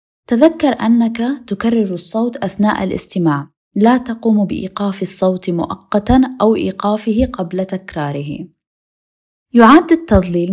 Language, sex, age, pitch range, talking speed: Arabic, female, 20-39, 175-230 Hz, 95 wpm